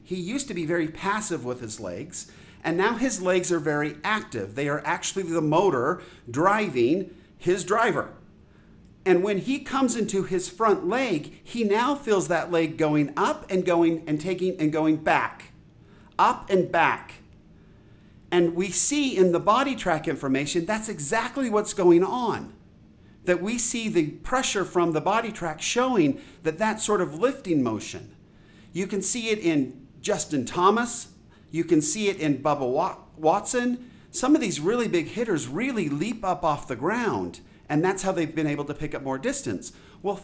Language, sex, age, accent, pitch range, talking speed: English, male, 50-69, American, 155-215 Hz, 175 wpm